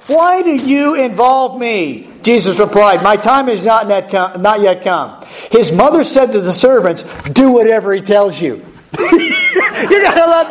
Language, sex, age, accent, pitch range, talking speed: English, male, 50-69, American, 210-300 Hz, 160 wpm